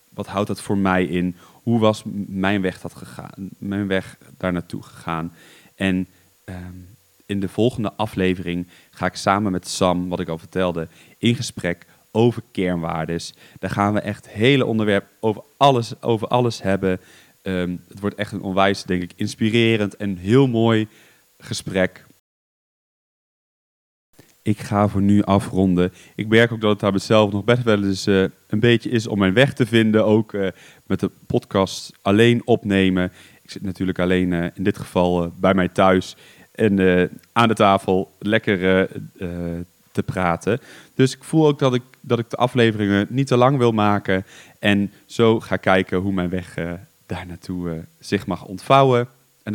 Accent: Dutch